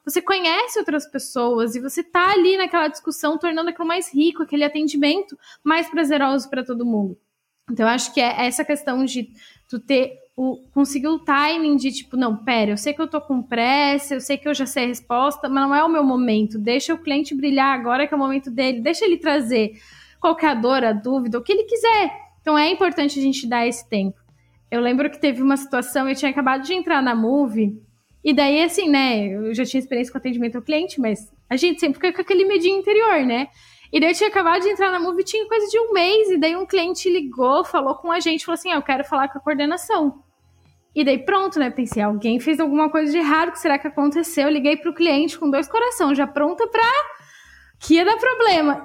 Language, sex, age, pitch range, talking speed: Portuguese, female, 10-29, 265-345 Hz, 230 wpm